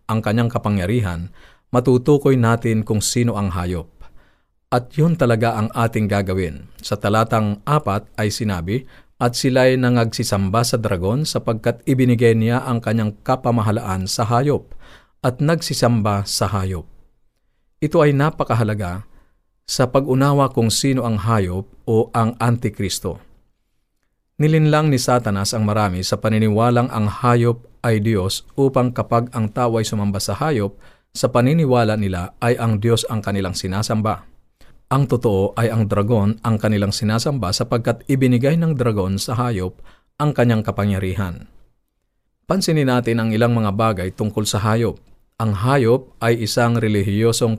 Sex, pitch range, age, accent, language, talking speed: male, 100-125 Hz, 50-69, native, Filipino, 135 wpm